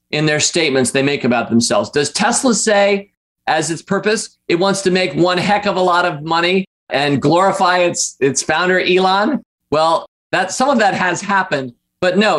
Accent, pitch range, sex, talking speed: American, 140-185 Hz, male, 190 wpm